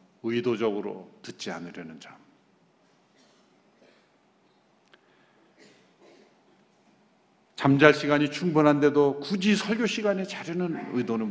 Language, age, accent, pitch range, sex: Korean, 50-69, native, 120-175 Hz, male